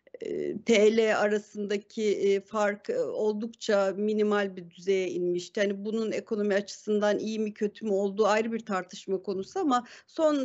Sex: female